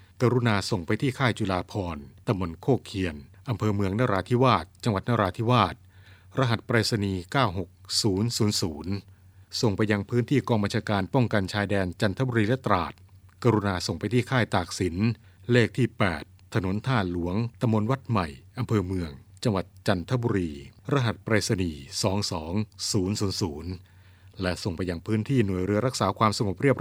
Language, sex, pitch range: Thai, male, 95-115 Hz